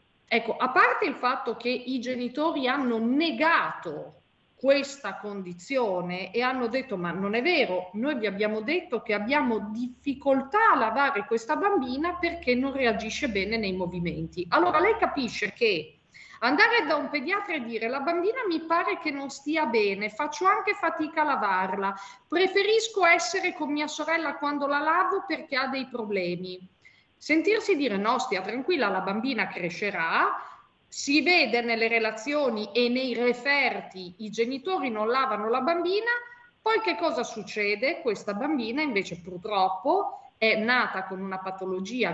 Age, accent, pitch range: 40-59, native, 190-295 Hz